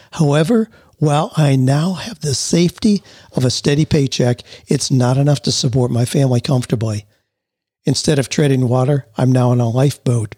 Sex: male